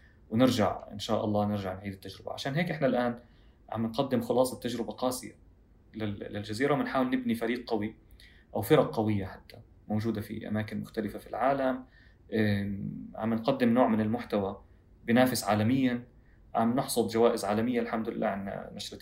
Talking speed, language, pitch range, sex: 145 wpm, Arabic, 105-125 Hz, male